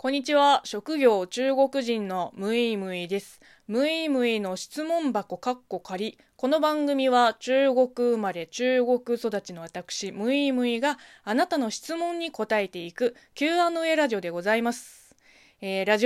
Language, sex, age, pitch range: Japanese, female, 20-39, 195-295 Hz